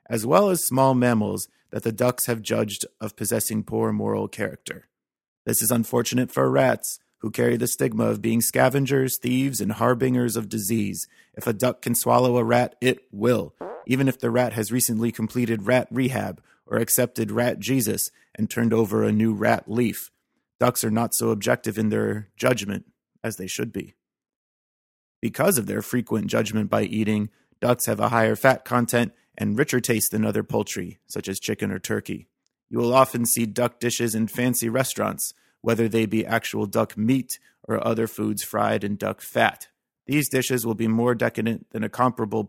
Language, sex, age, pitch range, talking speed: English, male, 30-49, 110-125 Hz, 180 wpm